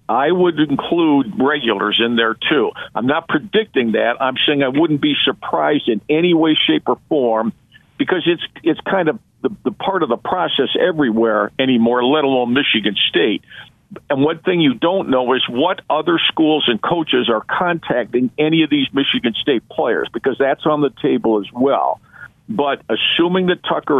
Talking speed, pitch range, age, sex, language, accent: 180 wpm, 120-160 Hz, 50-69, male, English, American